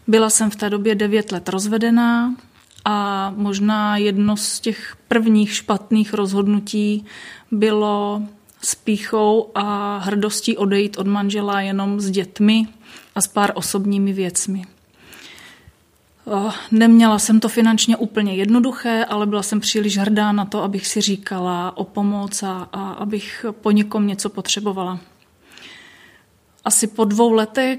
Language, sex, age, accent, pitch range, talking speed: Czech, female, 30-49, native, 200-220 Hz, 125 wpm